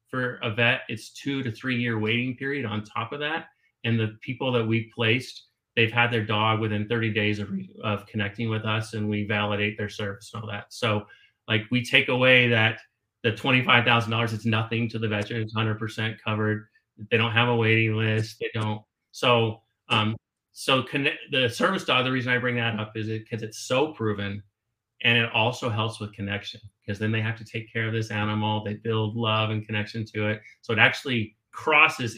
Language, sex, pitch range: English, male, 110-120 Hz